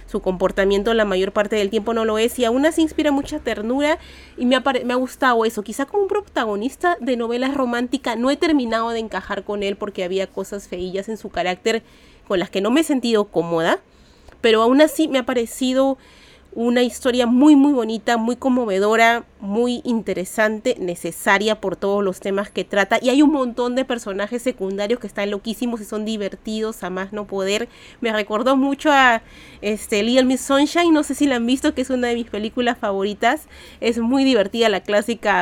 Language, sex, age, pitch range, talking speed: Spanish, female, 30-49, 200-245 Hz, 195 wpm